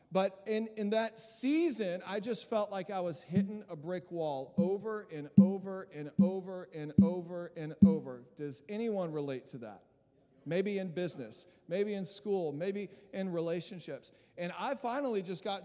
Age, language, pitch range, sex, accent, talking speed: 40-59, English, 150-190 Hz, male, American, 165 wpm